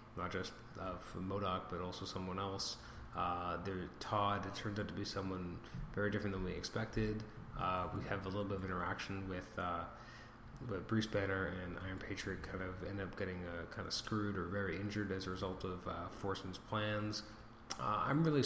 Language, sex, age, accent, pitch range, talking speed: English, male, 20-39, American, 95-110 Hz, 200 wpm